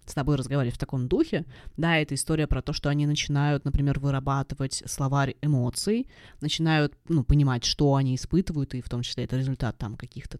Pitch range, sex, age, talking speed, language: 135-170 Hz, female, 20-39, 185 wpm, Russian